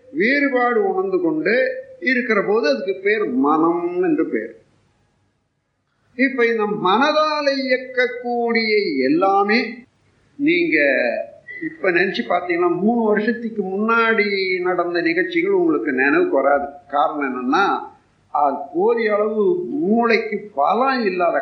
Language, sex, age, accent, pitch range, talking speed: Tamil, male, 50-69, native, 190-300 Hz, 100 wpm